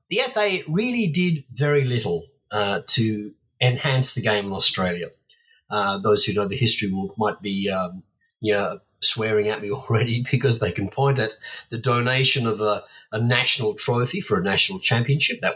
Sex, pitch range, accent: male, 105-140 Hz, Australian